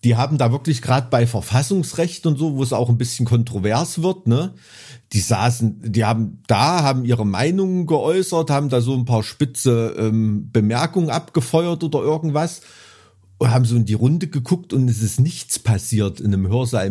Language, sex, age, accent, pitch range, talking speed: German, male, 50-69, German, 120-160 Hz, 185 wpm